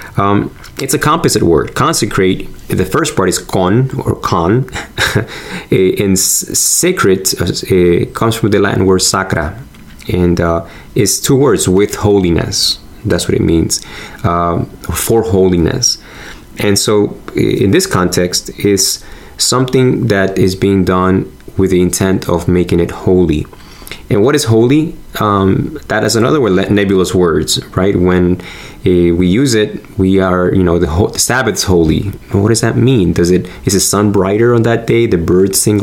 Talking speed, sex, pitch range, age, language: 160 wpm, male, 90-105 Hz, 20-39, English